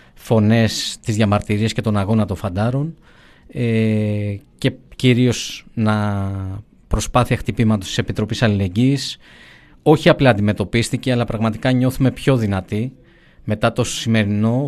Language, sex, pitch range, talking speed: Greek, male, 105-130 Hz, 115 wpm